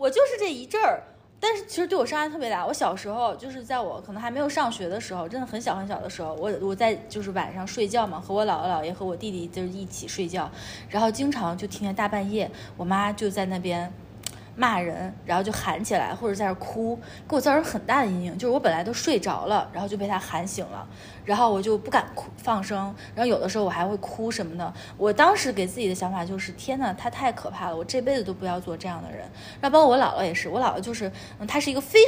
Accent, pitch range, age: native, 195-290 Hz, 20-39